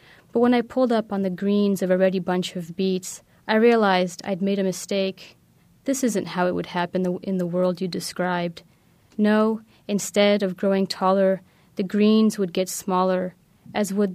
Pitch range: 180-205 Hz